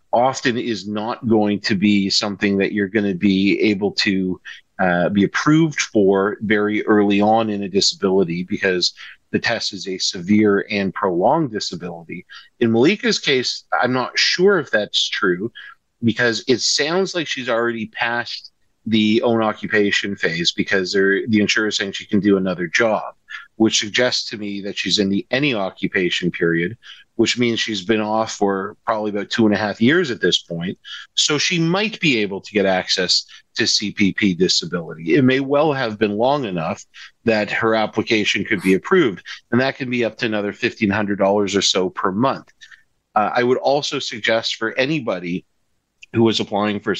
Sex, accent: male, American